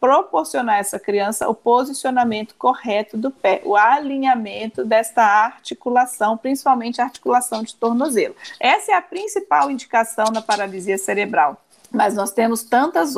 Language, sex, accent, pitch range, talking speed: Portuguese, female, Brazilian, 215-280 Hz, 135 wpm